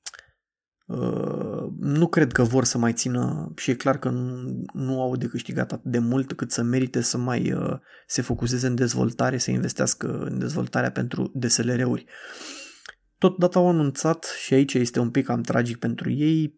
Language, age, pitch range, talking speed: Romanian, 20-39, 125-155 Hz, 175 wpm